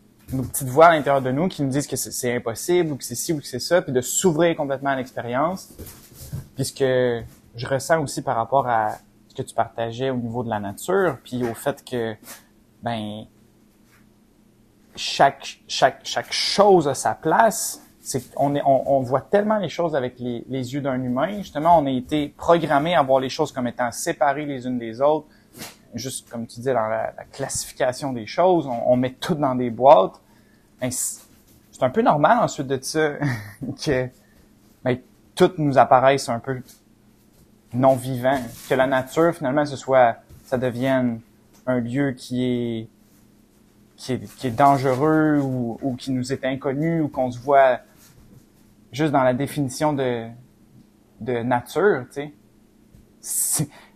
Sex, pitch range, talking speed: male, 115-140 Hz, 175 wpm